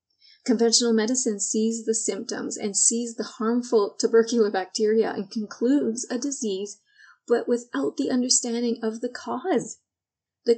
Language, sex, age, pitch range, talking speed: English, female, 30-49, 210-240 Hz, 130 wpm